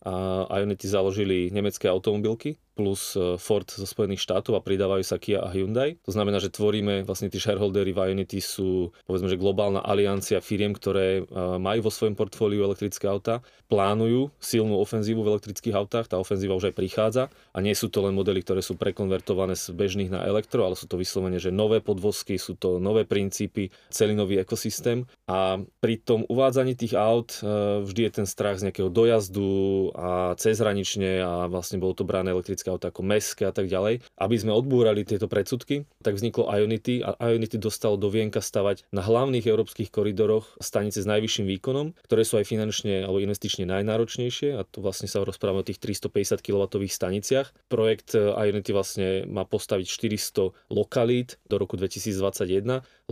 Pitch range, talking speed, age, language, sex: 95-110 Hz, 170 wpm, 30-49, Slovak, male